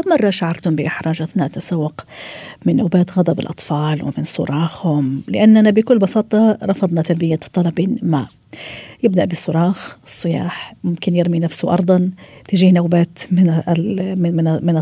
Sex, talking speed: female, 115 wpm